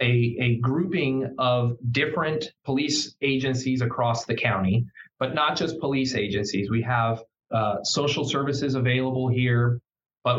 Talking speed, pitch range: 135 wpm, 115-140 Hz